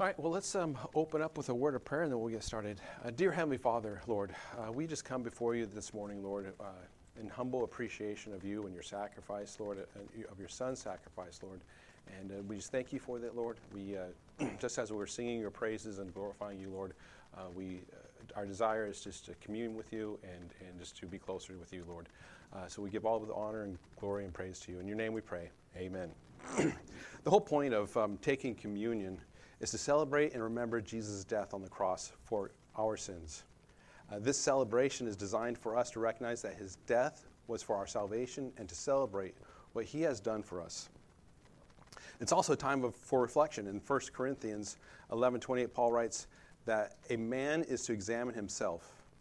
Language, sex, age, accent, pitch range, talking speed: English, male, 40-59, American, 100-120 Hz, 210 wpm